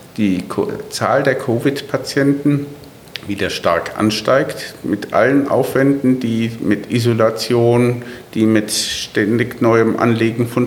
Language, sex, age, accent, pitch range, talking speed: German, male, 50-69, German, 110-145 Hz, 105 wpm